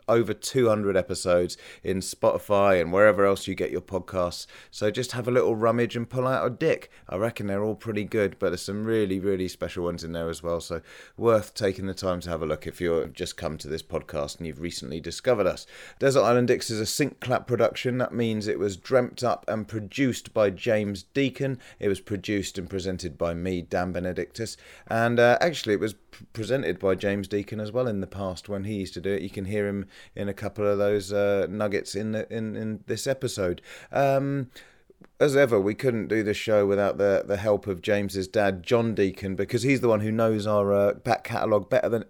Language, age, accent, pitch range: English, 30-49, British, 95-115 Hz